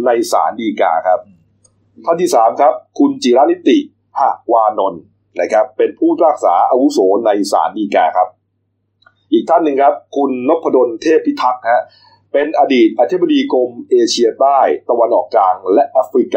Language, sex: Thai, male